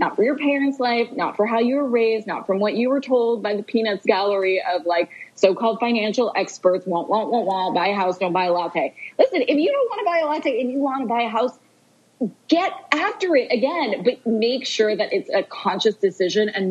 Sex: female